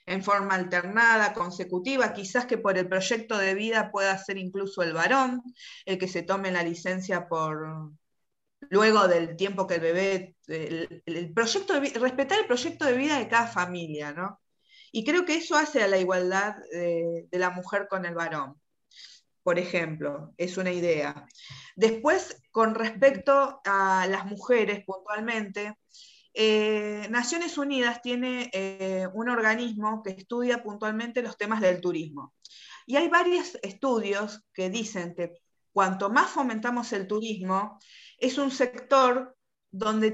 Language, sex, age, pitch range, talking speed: Spanish, female, 20-39, 185-245 Hz, 150 wpm